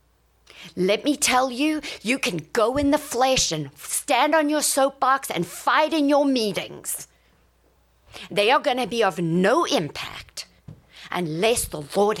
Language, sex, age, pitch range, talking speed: English, female, 50-69, 175-265 Hz, 150 wpm